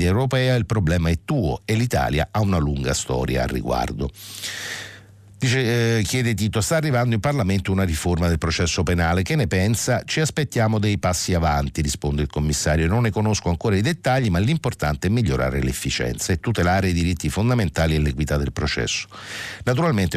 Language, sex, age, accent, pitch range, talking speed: Italian, male, 60-79, native, 80-115 Hz, 170 wpm